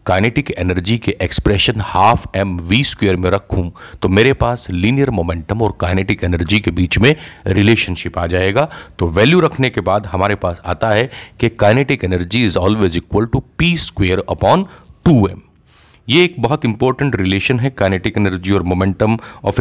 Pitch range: 95-120 Hz